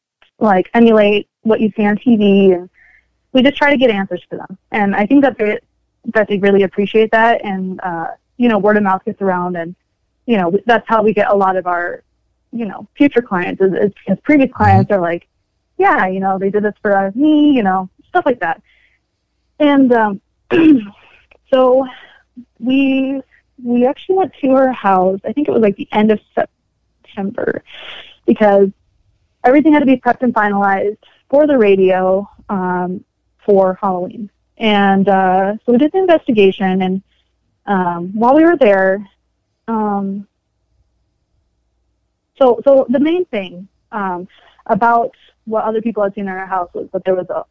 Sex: female